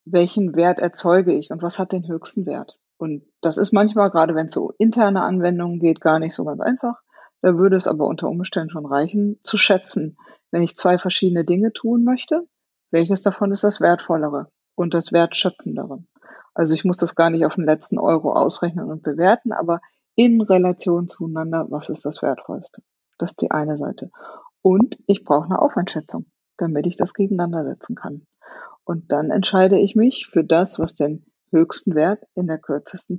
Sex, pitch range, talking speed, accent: female, 165-205 Hz, 185 wpm, German